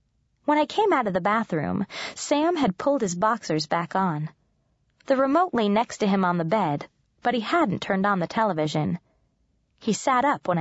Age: 20-39